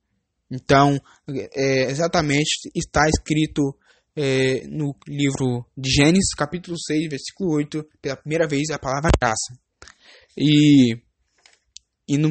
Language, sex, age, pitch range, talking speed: English, male, 10-29, 130-165 Hz, 105 wpm